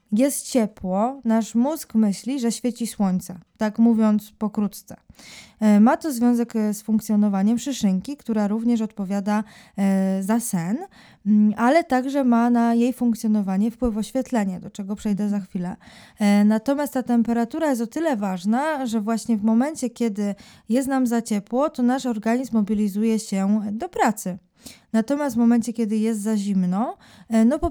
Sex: female